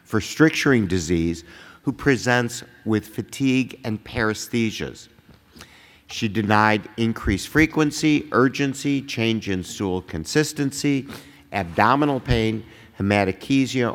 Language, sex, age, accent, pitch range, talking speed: English, male, 50-69, American, 95-115 Hz, 90 wpm